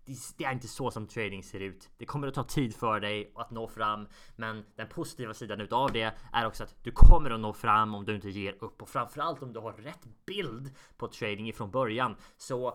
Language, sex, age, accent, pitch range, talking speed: Swedish, male, 20-39, Norwegian, 110-140 Hz, 230 wpm